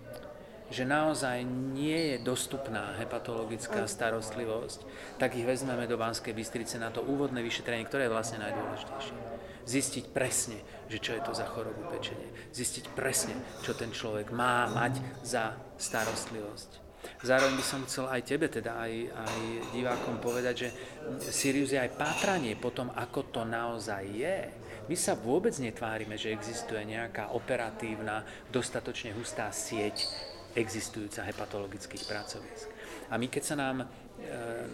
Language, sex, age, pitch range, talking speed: Slovak, male, 40-59, 115-130 Hz, 140 wpm